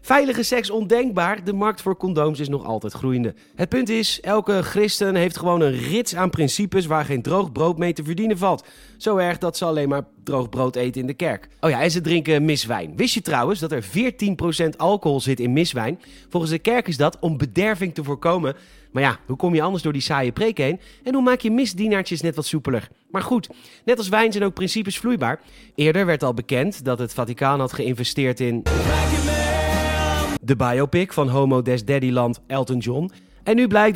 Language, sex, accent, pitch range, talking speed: Dutch, male, Dutch, 130-195 Hz, 205 wpm